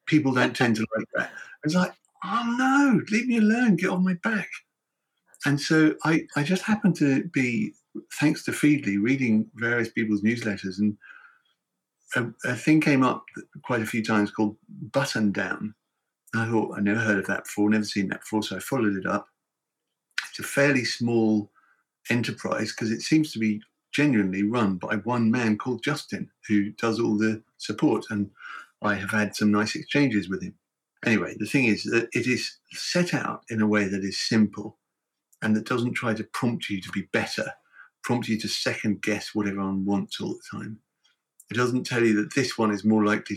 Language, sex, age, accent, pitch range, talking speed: English, male, 50-69, British, 105-135 Hz, 195 wpm